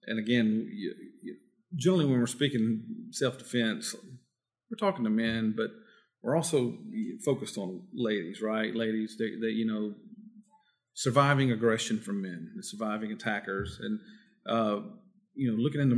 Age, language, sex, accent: 40-59, English, male, American